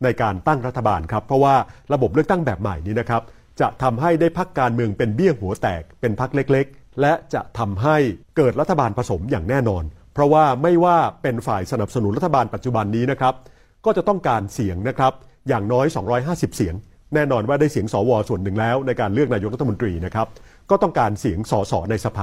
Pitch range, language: 105-145 Hz, Thai